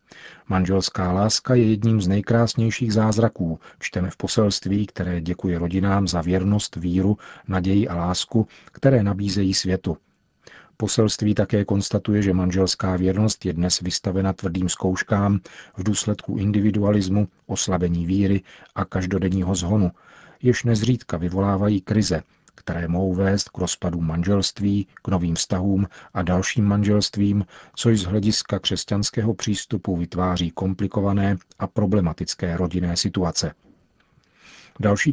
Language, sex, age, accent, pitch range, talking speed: Czech, male, 40-59, native, 95-105 Hz, 120 wpm